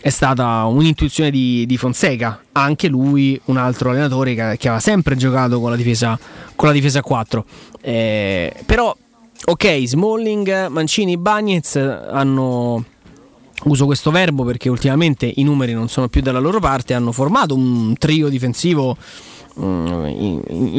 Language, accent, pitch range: Italian, native, 125-160 Hz